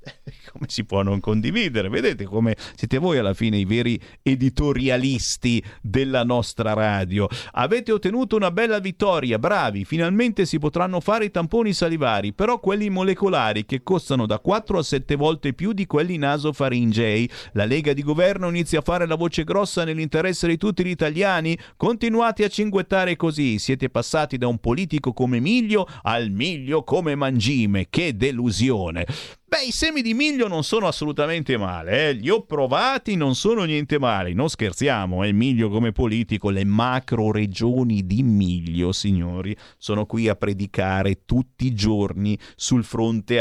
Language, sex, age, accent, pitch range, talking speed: Italian, male, 50-69, native, 110-170 Hz, 160 wpm